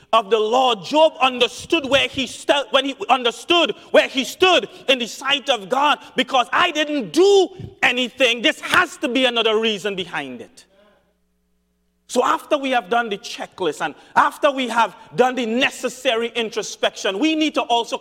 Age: 40-59